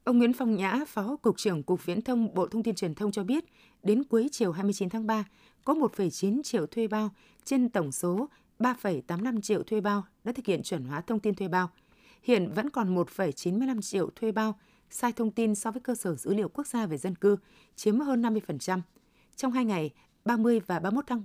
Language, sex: Vietnamese, female